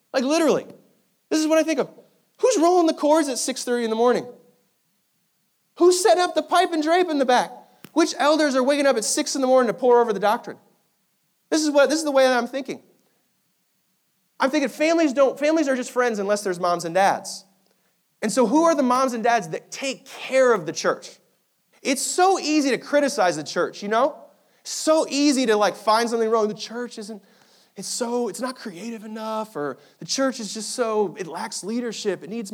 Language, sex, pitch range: English, male, 190-270 Hz